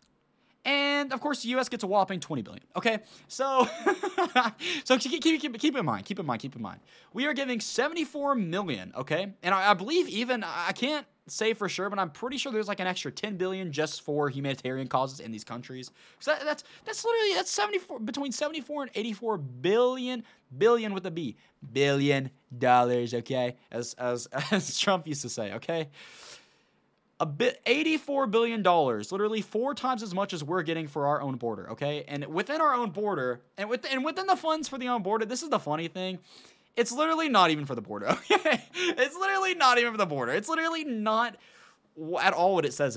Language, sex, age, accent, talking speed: English, male, 20-39, American, 210 wpm